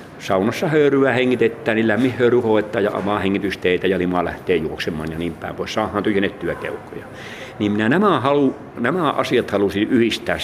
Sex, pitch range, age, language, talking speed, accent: male, 100-125 Hz, 60-79, Finnish, 140 wpm, native